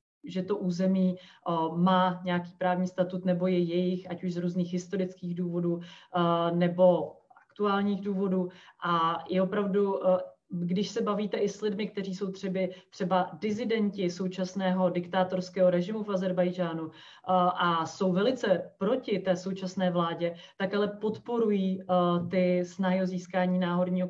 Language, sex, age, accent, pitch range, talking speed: Czech, female, 30-49, native, 180-200 Hz, 130 wpm